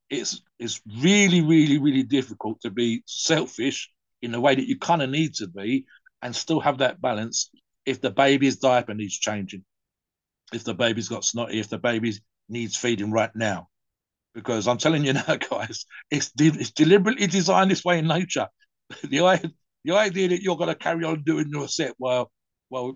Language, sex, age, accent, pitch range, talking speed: English, male, 50-69, British, 115-155 Hz, 185 wpm